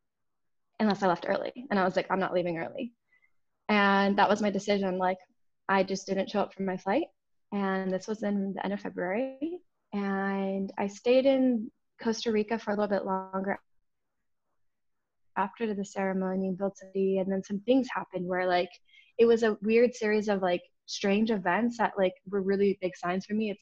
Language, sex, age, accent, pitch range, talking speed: English, female, 20-39, American, 185-215 Hz, 185 wpm